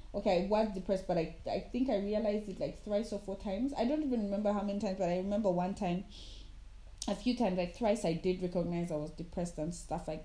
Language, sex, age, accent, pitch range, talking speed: English, female, 20-39, South African, 170-210 Hz, 240 wpm